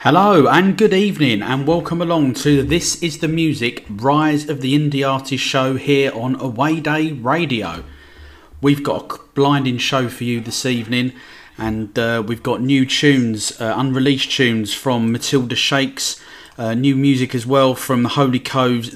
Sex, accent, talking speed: male, British, 165 wpm